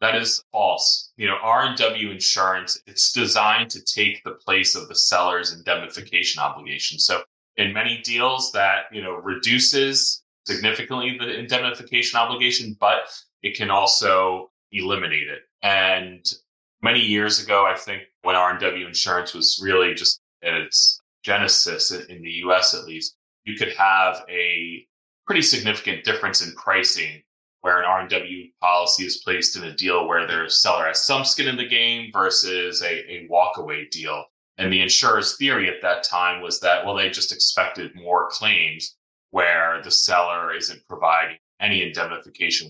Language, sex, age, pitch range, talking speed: English, male, 20-39, 90-115 Hz, 155 wpm